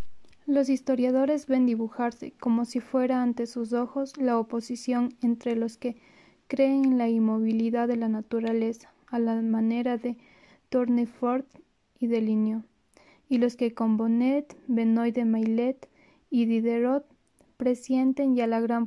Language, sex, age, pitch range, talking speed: Spanish, female, 20-39, 230-255 Hz, 140 wpm